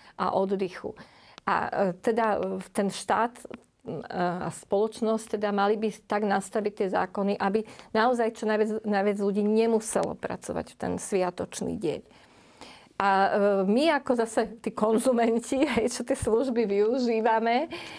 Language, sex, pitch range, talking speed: Slovak, female, 190-220 Hz, 120 wpm